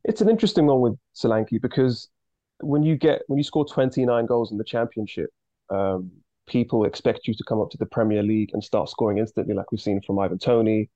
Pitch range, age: 110-135 Hz, 20-39